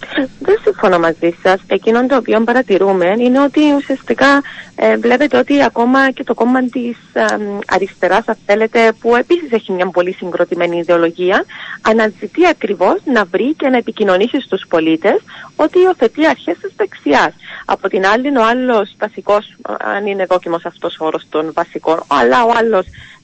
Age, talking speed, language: 30-49, 150 wpm, Greek